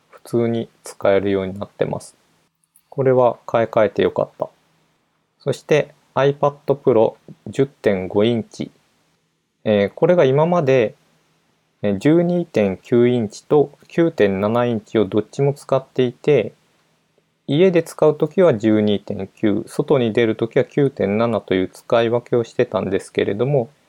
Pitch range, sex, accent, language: 105-145 Hz, male, native, Japanese